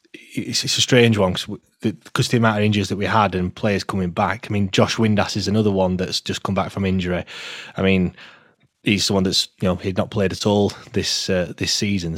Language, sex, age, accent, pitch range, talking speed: English, male, 20-39, British, 95-110 Hz, 235 wpm